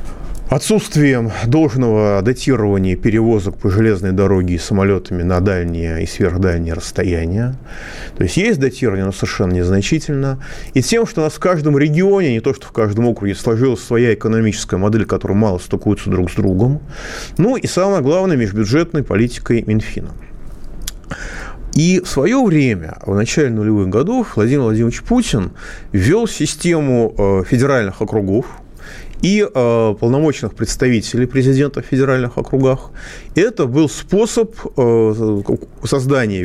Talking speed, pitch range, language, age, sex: 130 wpm, 100-150 Hz, Russian, 30-49, male